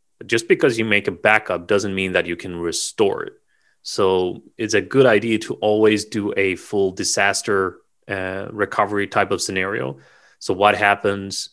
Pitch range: 95-105 Hz